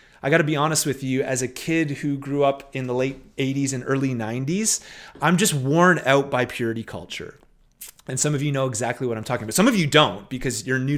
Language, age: English, 30-49